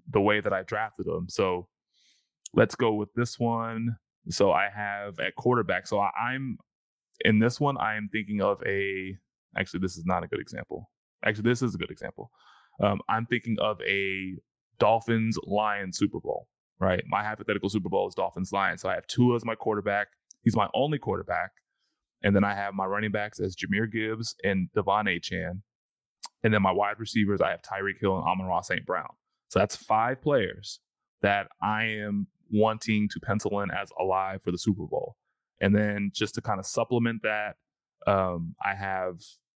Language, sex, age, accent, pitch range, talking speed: English, male, 20-39, American, 95-115 Hz, 190 wpm